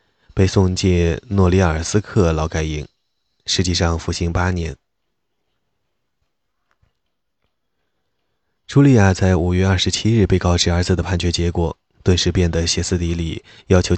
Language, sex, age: Chinese, male, 20-39